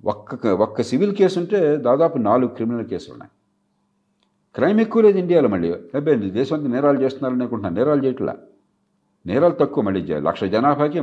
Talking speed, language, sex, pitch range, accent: 150 wpm, Telugu, male, 95-160 Hz, native